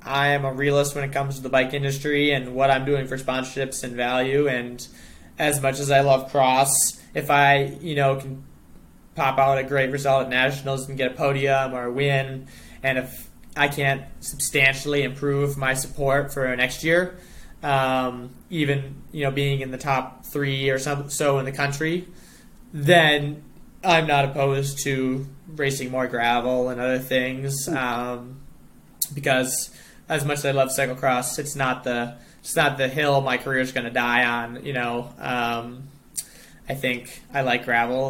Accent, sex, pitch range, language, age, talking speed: American, male, 125-140 Hz, English, 20-39, 175 wpm